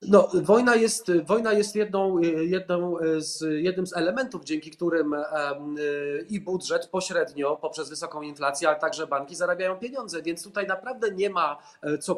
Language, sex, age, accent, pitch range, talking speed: Polish, male, 30-49, native, 155-185 Hz, 150 wpm